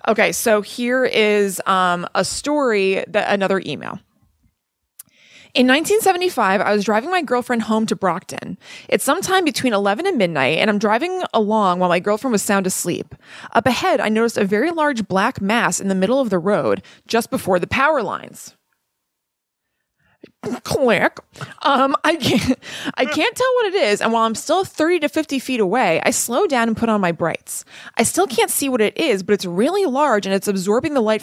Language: English